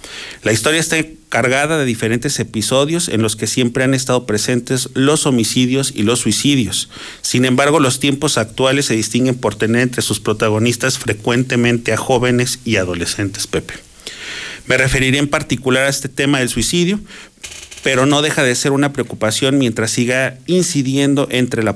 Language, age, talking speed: Spanish, 40-59, 160 wpm